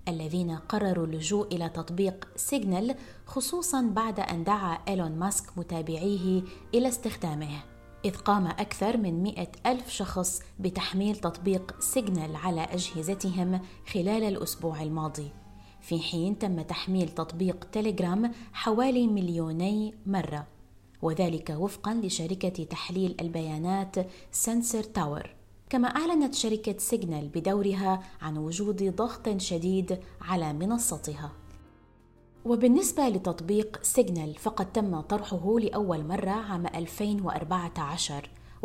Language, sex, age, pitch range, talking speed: Arabic, female, 20-39, 165-205 Hz, 105 wpm